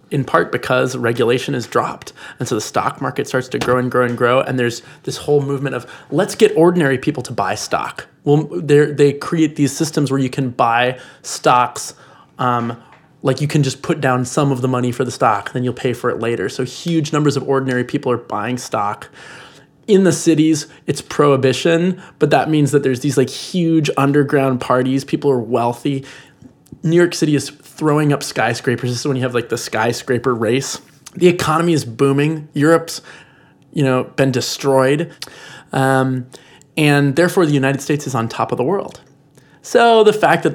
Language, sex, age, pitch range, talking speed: English, male, 20-39, 125-150 Hz, 190 wpm